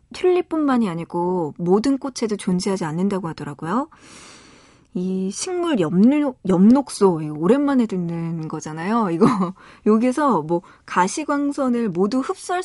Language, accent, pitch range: Korean, native, 185-255 Hz